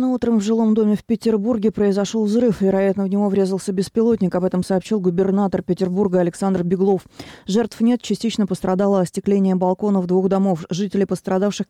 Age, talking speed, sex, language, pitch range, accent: 20-39, 155 wpm, female, Russian, 175-200 Hz, native